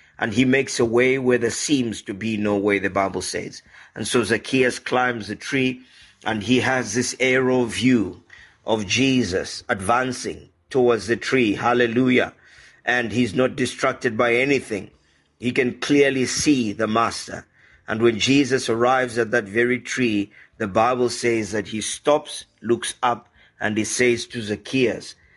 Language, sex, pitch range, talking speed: English, male, 110-130 Hz, 160 wpm